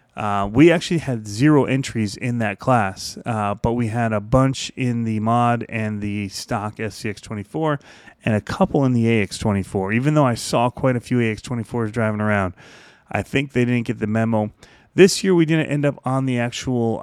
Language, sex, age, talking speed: English, male, 30-49, 190 wpm